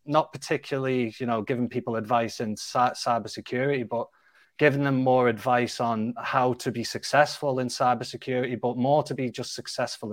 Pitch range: 120-140 Hz